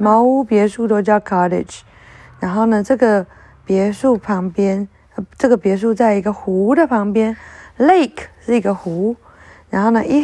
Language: Chinese